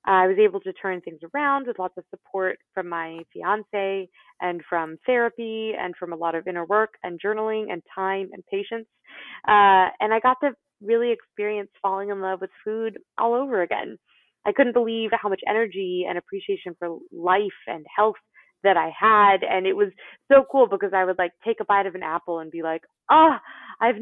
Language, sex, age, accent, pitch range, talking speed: English, female, 20-39, American, 185-245 Hz, 200 wpm